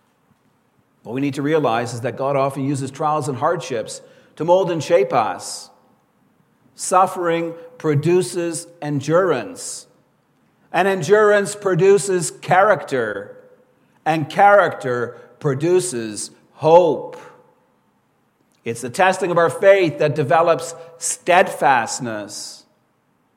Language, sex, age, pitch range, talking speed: English, male, 40-59, 145-195 Hz, 100 wpm